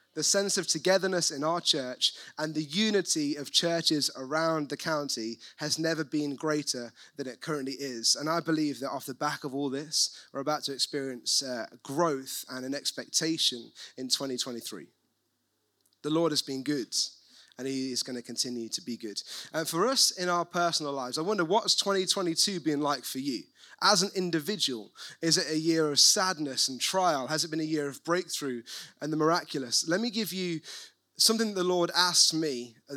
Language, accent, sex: English, British, male